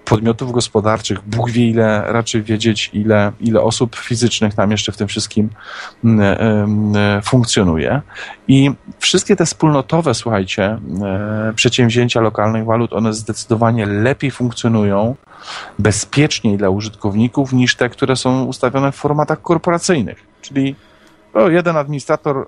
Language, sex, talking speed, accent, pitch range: Polish, male, 115 wpm, native, 105-130 Hz